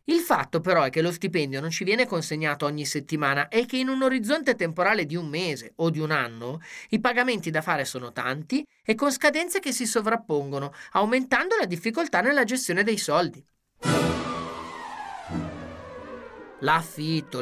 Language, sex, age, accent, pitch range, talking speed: Italian, male, 30-49, native, 155-240 Hz, 160 wpm